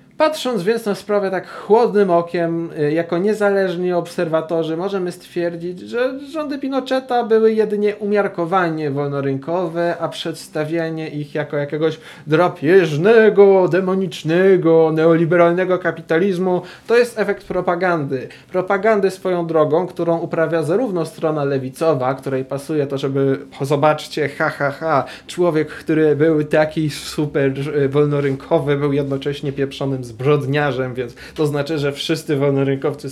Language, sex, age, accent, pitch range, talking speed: Polish, male, 20-39, native, 140-175 Hz, 120 wpm